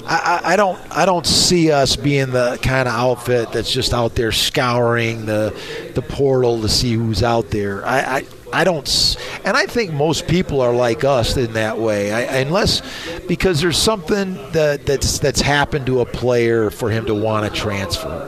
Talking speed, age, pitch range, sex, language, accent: 195 wpm, 40-59, 120-145 Hz, male, English, American